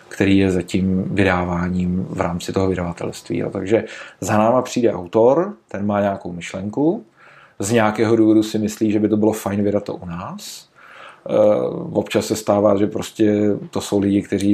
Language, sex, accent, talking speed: Czech, male, native, 170 wpm